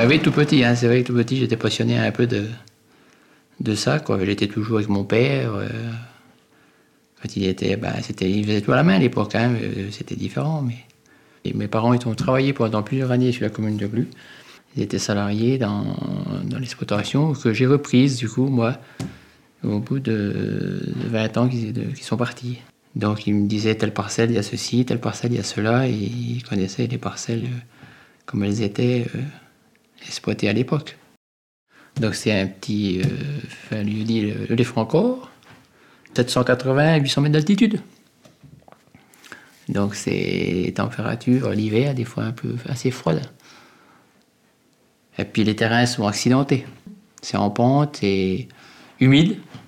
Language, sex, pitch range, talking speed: French, male, 105-130 Hz, 170 wpm